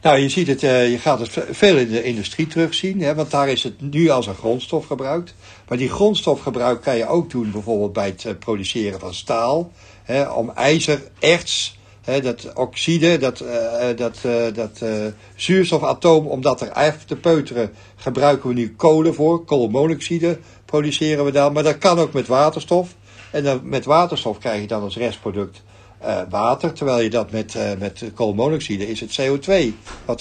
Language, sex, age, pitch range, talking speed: Dutch, male, 60-79, 105-150 Hz, 160 wpm